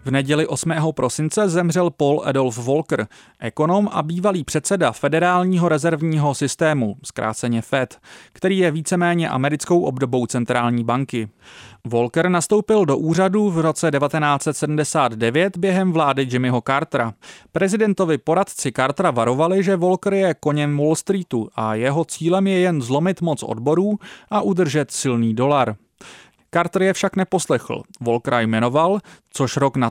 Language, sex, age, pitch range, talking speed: Czech, male, 30-49, 130-180 Hz, 130 wpm